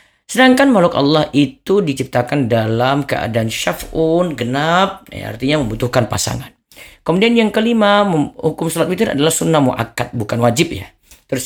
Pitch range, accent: 115-145 Hz, native